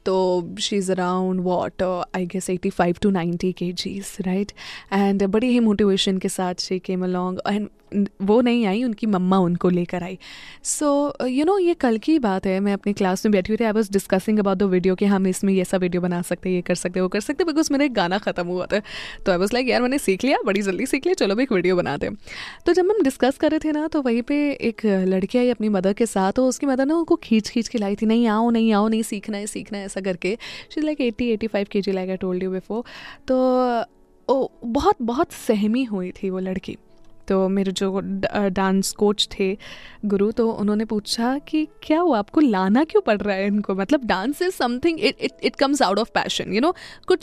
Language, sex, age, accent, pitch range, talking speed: Hindi, female, 20-39, native, 190-260 Hz, 210 wpm